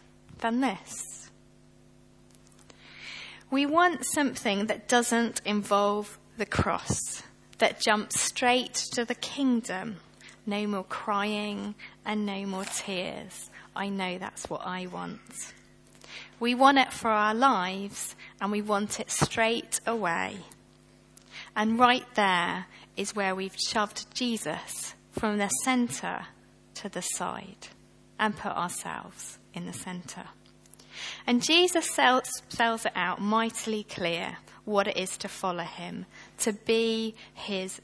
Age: 30-49